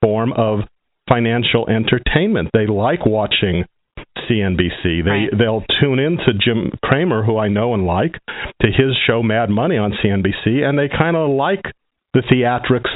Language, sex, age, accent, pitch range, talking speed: English, male, 50-69, American, 110-140 Hz, 155 wpm